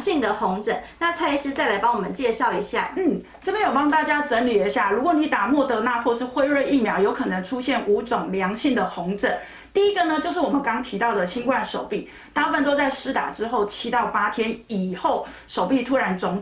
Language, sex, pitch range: Chinese, female, 220-305 Hz